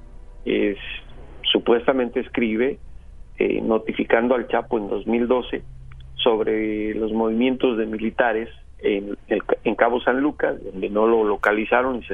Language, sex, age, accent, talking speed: Spanish, male, 40-59, Mexican, 125 wpm